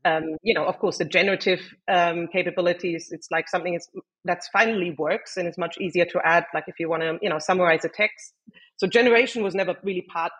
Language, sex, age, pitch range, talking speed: English, female, 30-49, 165-195 Hz, 220 wpm